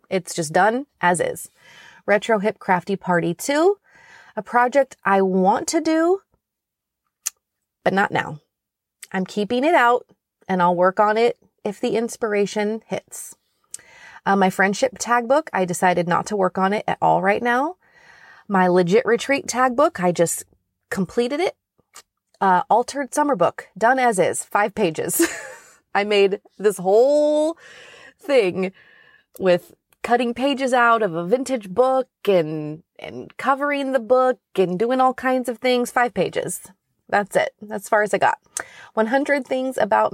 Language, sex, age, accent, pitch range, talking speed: English, female, 30-49, American, 185-265 Hz, 150 wpm